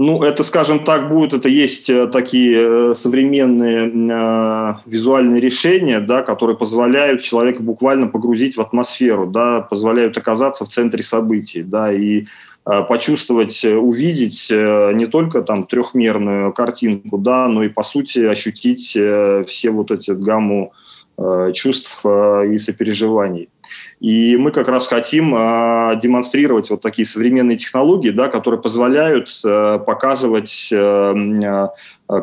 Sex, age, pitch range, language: male, 30-49, 105-130 Hz, Russian